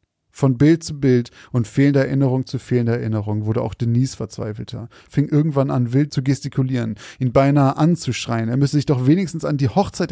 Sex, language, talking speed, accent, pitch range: male, German, 185 wpm, German, 110-140 Hz